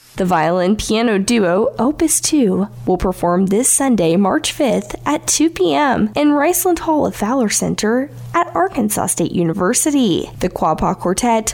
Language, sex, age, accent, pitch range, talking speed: English, female, 10-29, American, 175-280 Hz, 140 wpm